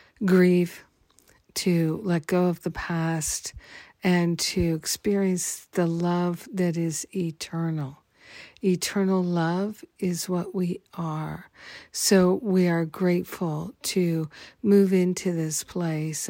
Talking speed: 110 wpm